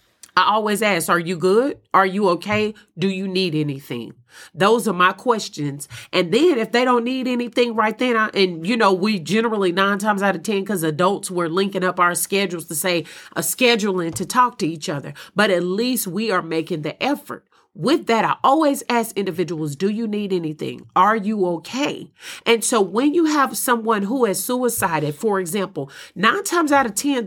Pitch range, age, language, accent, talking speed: 185-245 Hz, 40-59, English, American, 195 wpm